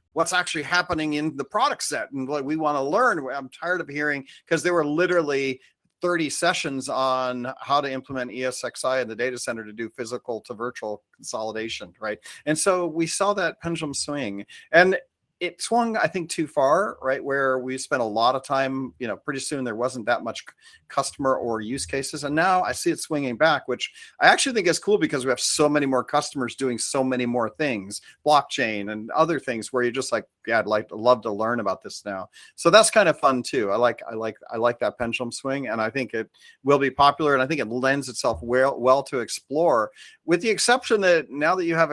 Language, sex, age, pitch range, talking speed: English, male, 40-59, 125-165 Hz, 225 wpm